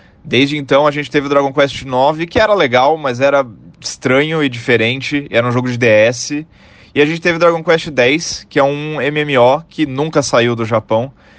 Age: 20-39